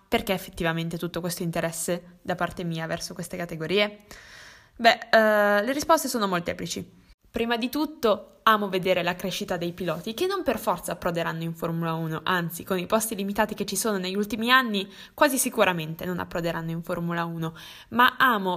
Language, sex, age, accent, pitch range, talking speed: Italian, female, 10-29, native, 175-240 Hz, 170 wpm